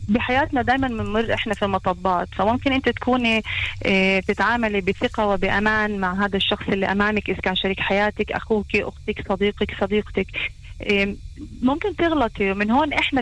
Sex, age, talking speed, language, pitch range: female, 30-49, 135 wpm, Hebrew, 205-255 Hz